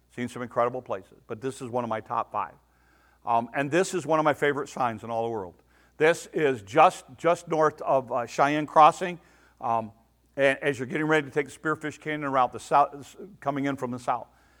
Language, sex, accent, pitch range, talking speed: English, male, American, 130-165 Hz, 220 wpm